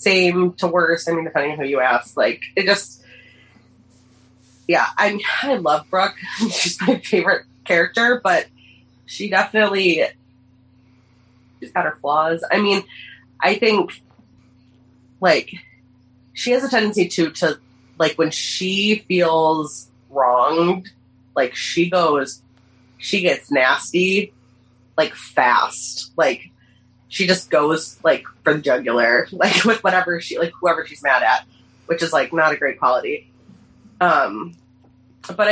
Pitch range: 125-185 Hz